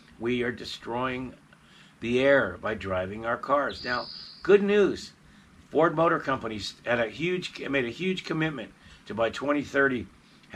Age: 50-69